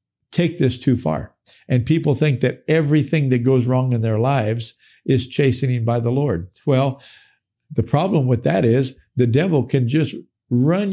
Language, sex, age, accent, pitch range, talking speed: English, male, 50-69, American, 120-155 Hz, 170 wpm